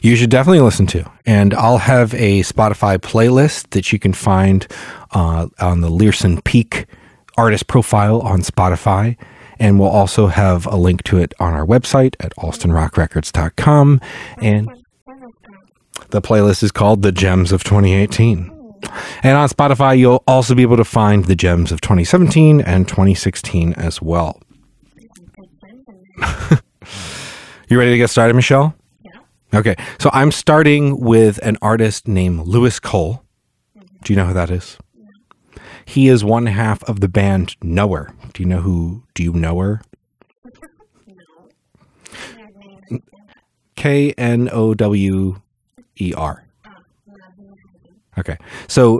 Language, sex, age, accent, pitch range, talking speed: English, male, 30-49, American, 95-130 Hz, 125 wpm